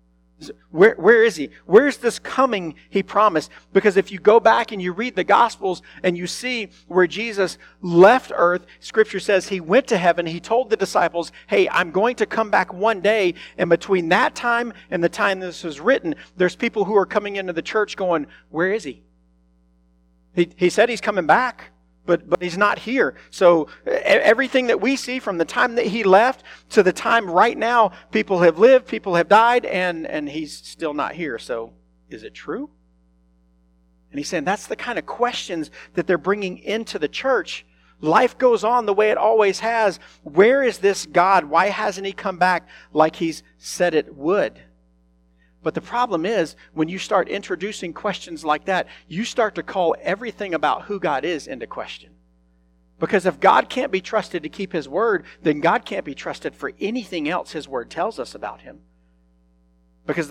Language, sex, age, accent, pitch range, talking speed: English, male, 50-69, American, 150-220 Hz, 190 wpm